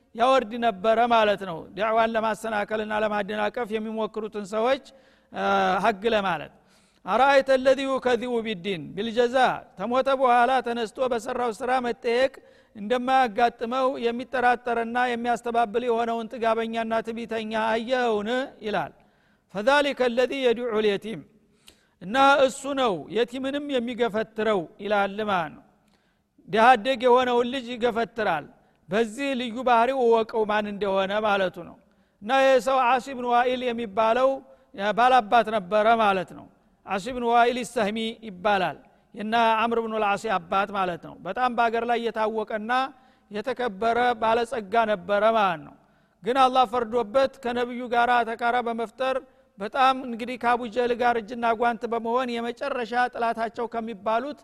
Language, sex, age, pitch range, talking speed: Amharic, male, 50-69, 220-250 Hz, 110 wpm